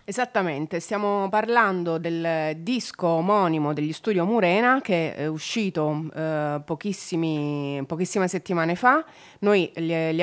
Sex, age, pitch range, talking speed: female, 30-49, 155-185 Hz, 115 wpm